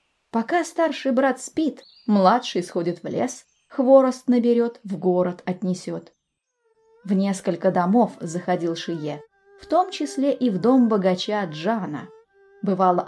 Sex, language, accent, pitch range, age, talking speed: female, Russian, native, 185-275 Hz, 20-39, 125 wpm